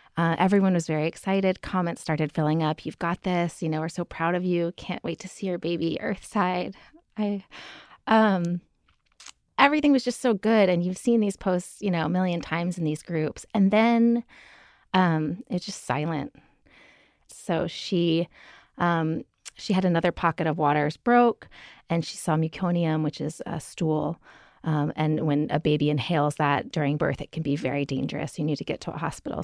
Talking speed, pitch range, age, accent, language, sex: 185 wpm, 160-190 Hz, 30-49, American, English, female